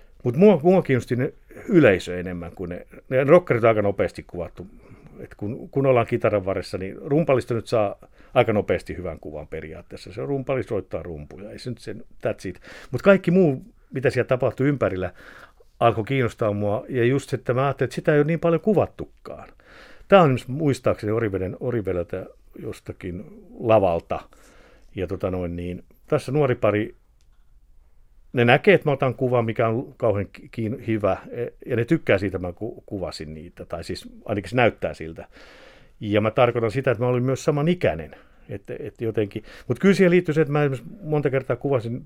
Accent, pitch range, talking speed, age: native, 105-140 Hz, 165 wpm, 50-69